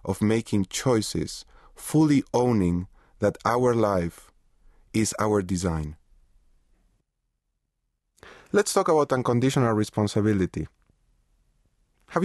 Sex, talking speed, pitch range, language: male, 85 wpm, 105-150 Hz, English